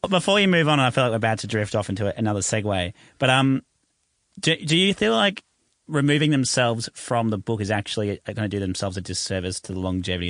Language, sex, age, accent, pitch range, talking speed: English, male, 30-49, Australian, 95-120 Hz, 220 wpm